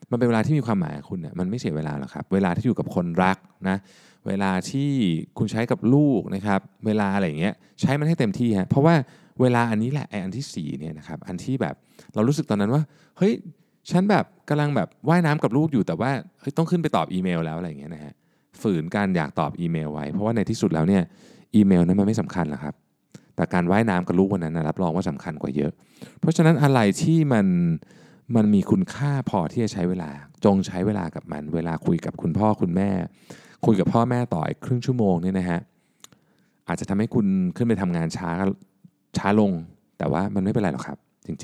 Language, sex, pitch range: Thai, male, 85-125 Hz